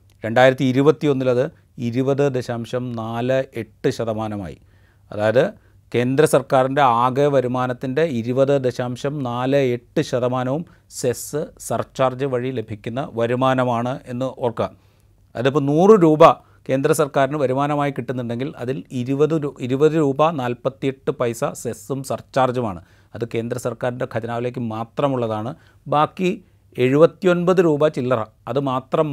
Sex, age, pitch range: male, 30-49, 120-150 Hz